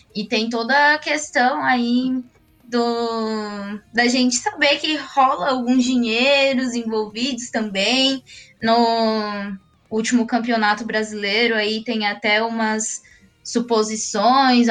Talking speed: 100 wpm